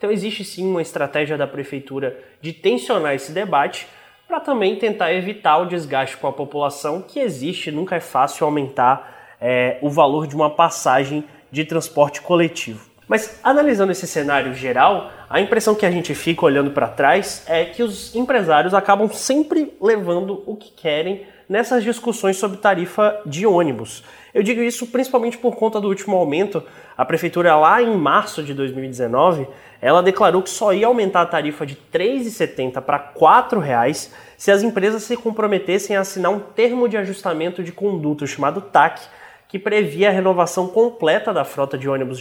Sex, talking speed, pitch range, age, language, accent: male, 170 wpm, 150-210 Hz, 20-39, Portuguese, Brazilian